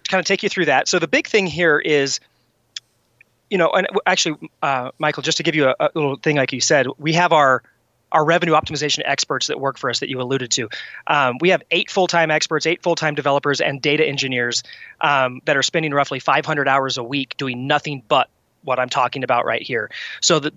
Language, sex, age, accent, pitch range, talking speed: English, male, 30-49, American, 135-165 Hz, 220 wpm